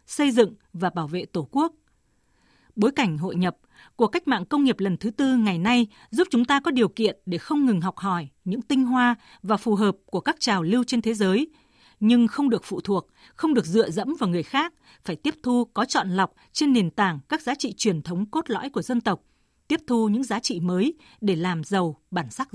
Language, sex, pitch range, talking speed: Vietnamese, female, 195-270 Hz, 230 wpm